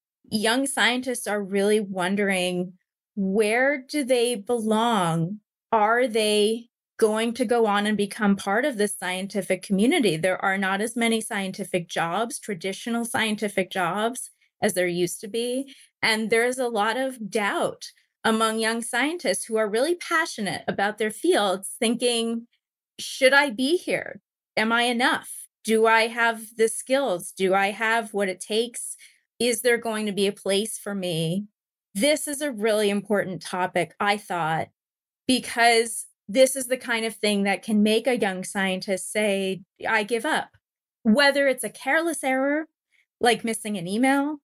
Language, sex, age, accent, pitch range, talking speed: English, female, 30-49, American, 200-245 Hz, 155 wpm